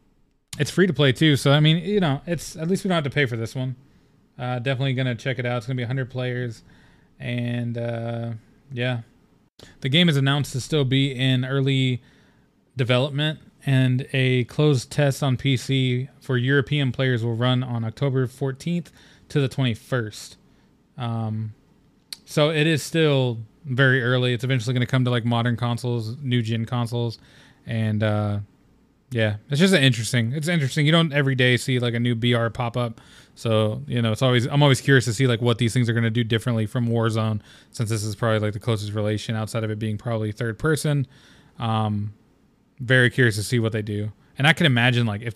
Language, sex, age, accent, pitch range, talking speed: English, male, 20-39, American, 115-135 Hz, 195 wpm